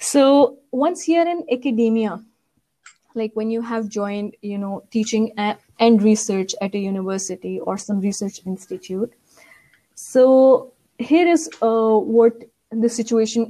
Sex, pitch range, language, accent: female, 210-255 Hz, English, Indian